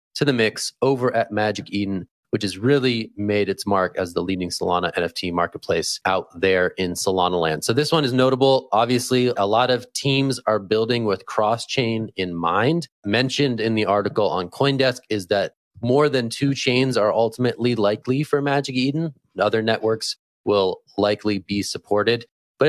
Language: English